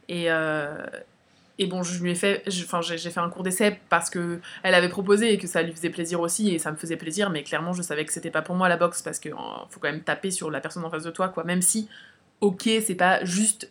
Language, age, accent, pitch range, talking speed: French, 20-39, French, 170-210 Hz, 245 wpm